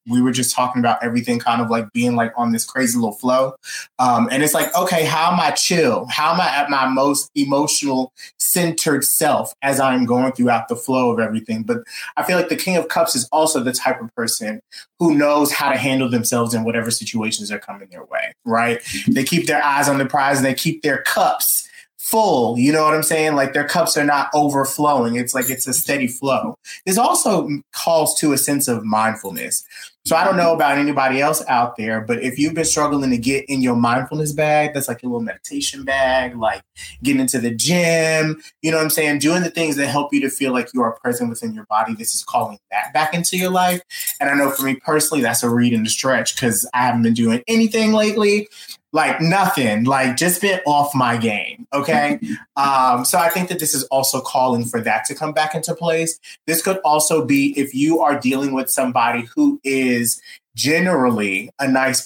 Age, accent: 30-49, American